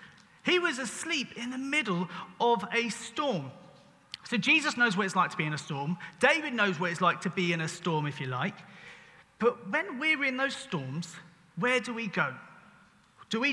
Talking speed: 200 wpm